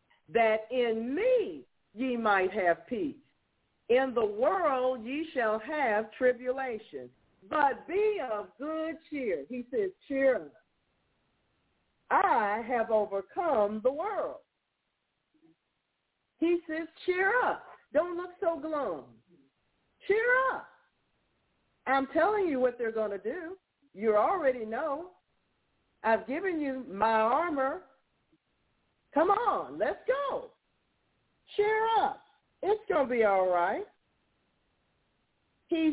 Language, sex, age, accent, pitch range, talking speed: English, female, 50-69, American, 230-340 Hz, 110 wpm